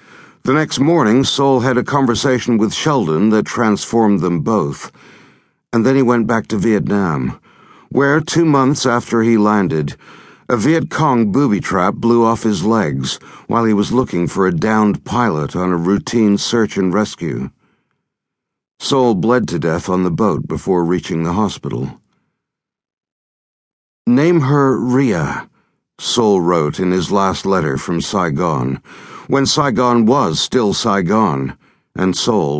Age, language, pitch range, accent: 60-79, English, 90-125 Hz, American